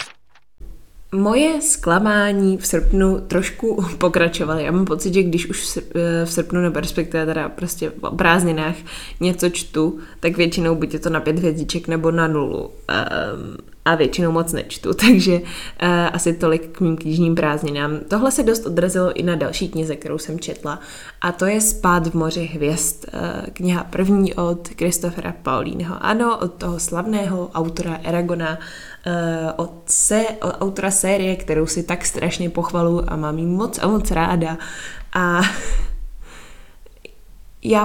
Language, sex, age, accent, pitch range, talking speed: Czech, female, 20-39, native, 165-195 Hz, 150 wpm